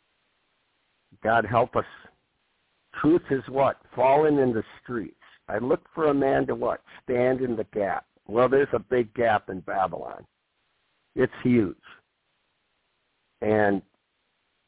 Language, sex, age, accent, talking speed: English, male, 60-79, American, 125 wpm